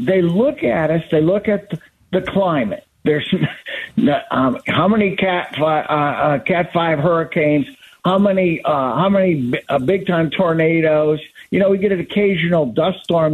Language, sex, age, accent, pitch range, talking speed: English, male, 50-69, American, 155-190 Hz, 155 wpm